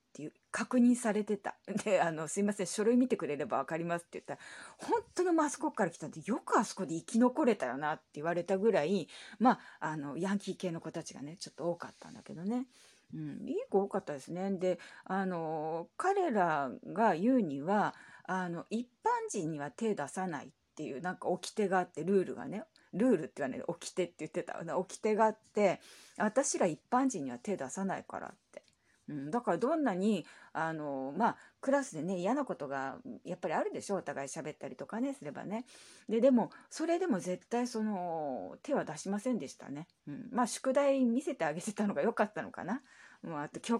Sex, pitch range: female, 165-240 Hz